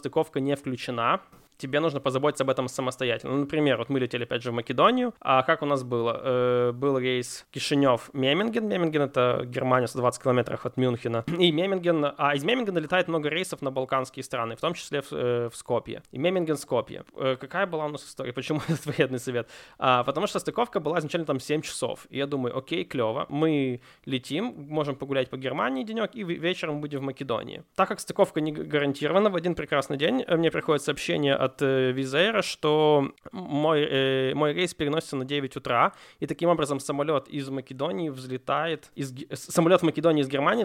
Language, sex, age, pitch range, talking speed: Russian, male, 20-39, 130-160 Hz, 195 wpm